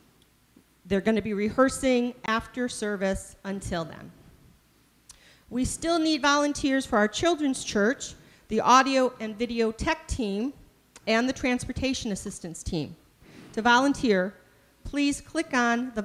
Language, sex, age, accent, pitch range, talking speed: English, female, 40-59, American, 195-260 Hz, 125 wpm